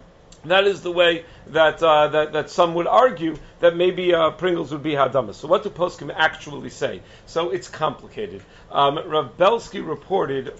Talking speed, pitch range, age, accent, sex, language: 175 wpm, 145-185 Hz, 50-69, American, male, English